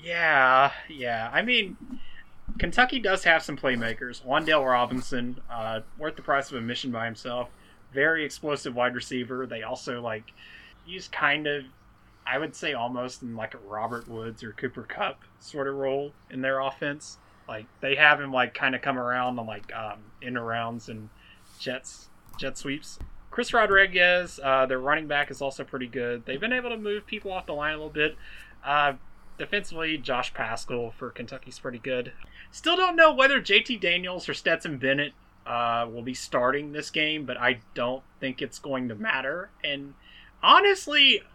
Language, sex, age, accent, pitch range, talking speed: English, male, 30-49, American, 120-155 Hz, 175 wpm